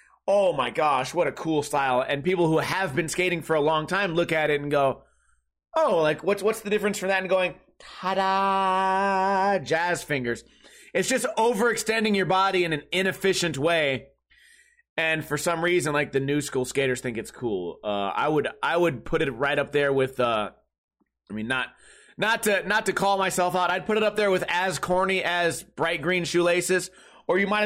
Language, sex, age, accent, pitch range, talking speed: English, male, 30-49, American, 160-200 Hz, 200 wpm